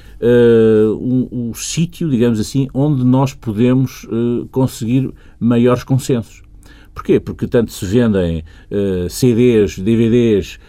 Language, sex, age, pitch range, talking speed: Portuguese, male, 50-69, 100-130 Hz, 100 wpm